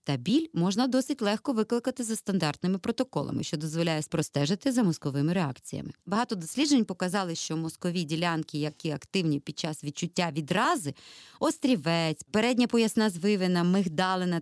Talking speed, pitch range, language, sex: 135 wpm, 160-225 Hz, Ukrainian, female